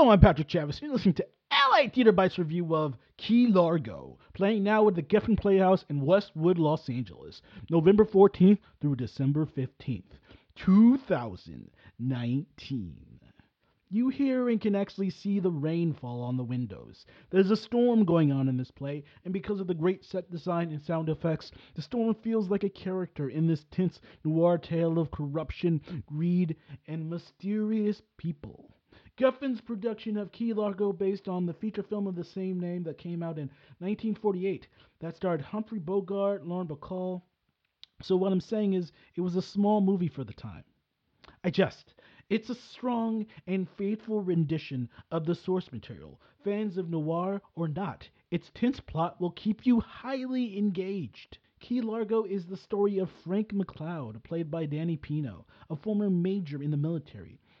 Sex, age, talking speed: male, 30-49, 165 wpm